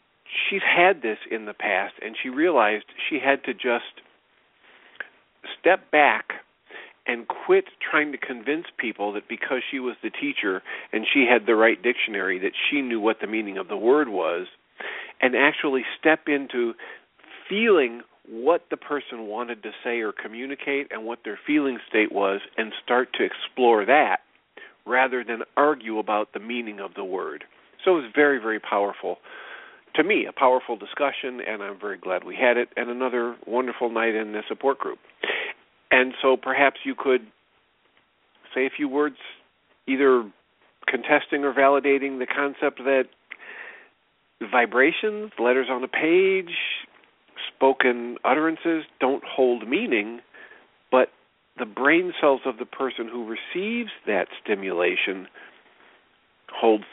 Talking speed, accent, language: 150 wpm, American, English